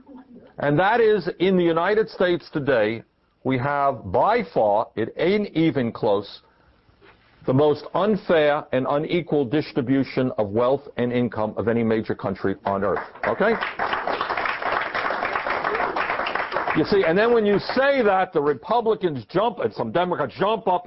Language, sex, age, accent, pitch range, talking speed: English, male, 50-69, American, 145-230 Hz, 140 wpm